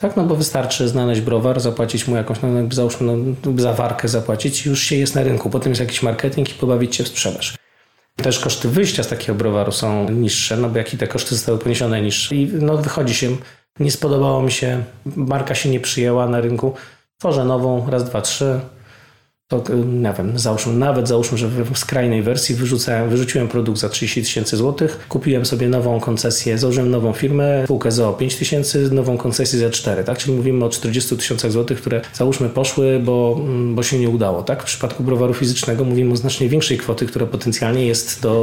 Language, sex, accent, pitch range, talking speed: Polish, male, native, 115-130 Hz, 200 wpm